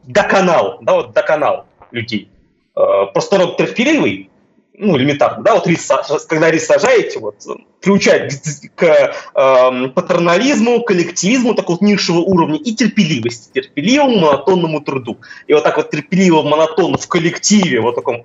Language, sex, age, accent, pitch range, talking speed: Russian, male, 20-39, native, 155-210 Hz, 145 wpm